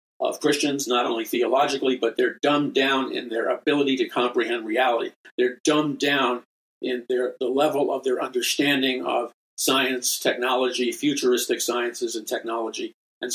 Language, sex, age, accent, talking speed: English, male, 50-69, American, 150 wpm